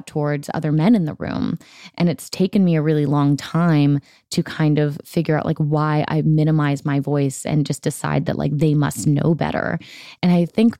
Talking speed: 205 wpm